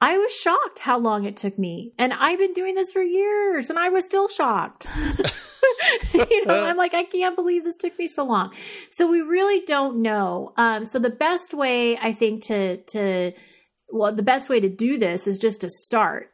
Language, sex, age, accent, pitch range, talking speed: English, female, 30-49, American, 185-250 Hz, 210 wpm